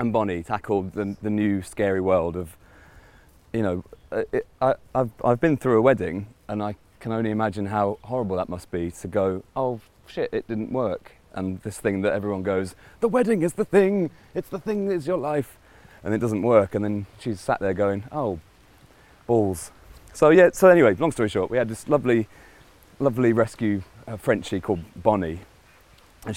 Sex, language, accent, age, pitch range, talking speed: male, English, British, 30-49, 95-115 Hz, 190 wpm